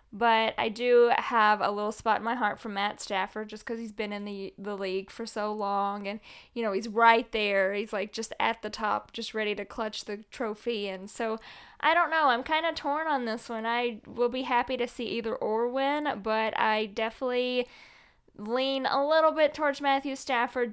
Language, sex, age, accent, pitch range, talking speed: English, female, 10-29, American, 210-240 Hz, 210 wpm